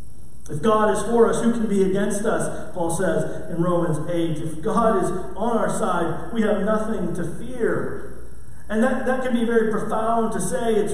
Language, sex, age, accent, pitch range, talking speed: English, male, 40-59, American, 150-215 Hz, 195 wpm